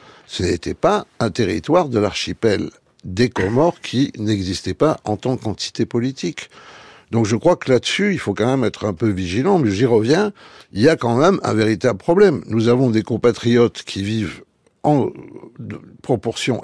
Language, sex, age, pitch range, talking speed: French, male, 60-79, 105-135 Hz, 175 wpm